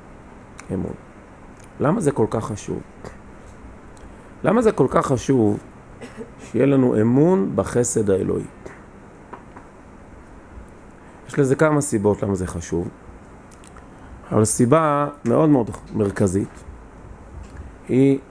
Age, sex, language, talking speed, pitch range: 40-59, male, Hebrew, 95 wpm, 95-140 Hz